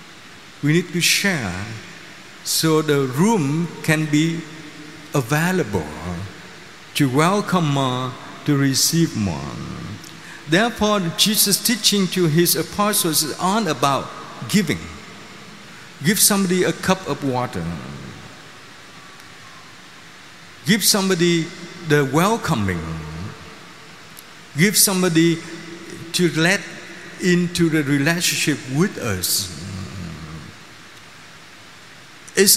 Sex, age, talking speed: male, 50-69, 85 wpm